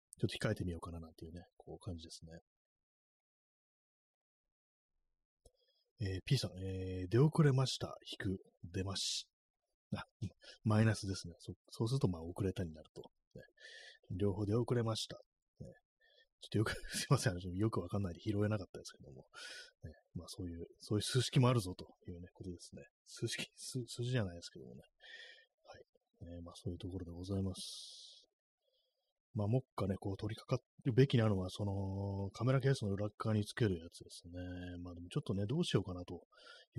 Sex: male